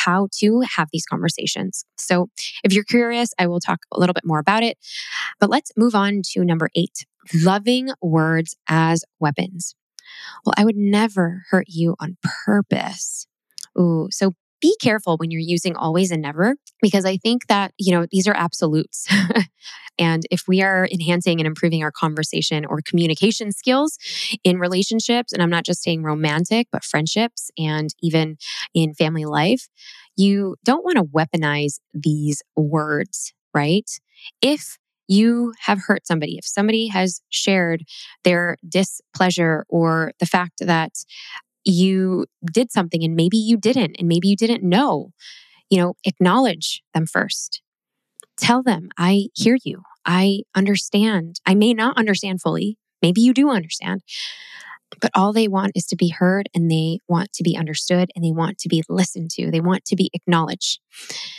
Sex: female